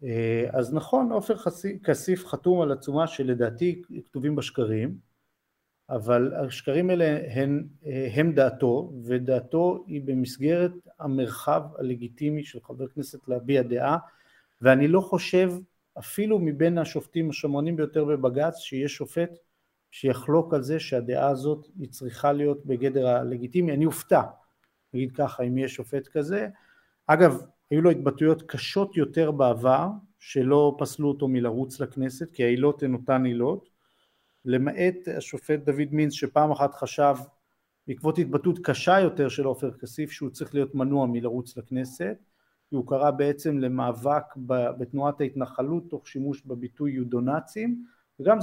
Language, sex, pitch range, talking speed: Hebrew, male, 130-160 Hz, 130 wpm